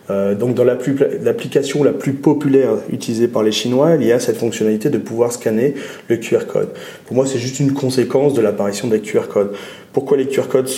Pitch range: 110-140 Hz